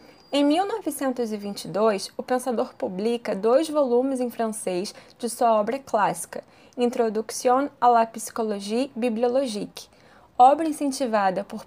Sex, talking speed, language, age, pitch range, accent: female, 110 wpm, Portuguese, 20-39, 220-265 Hz, Brazilian